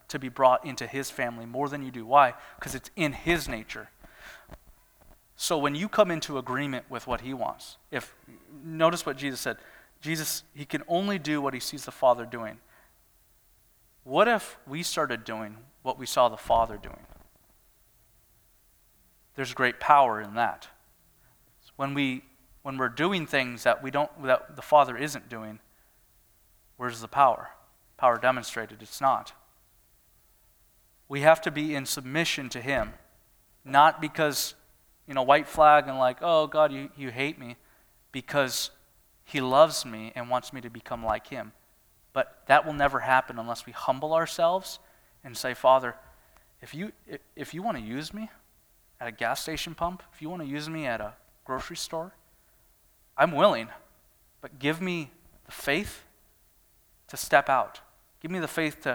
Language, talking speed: English, 165 wpm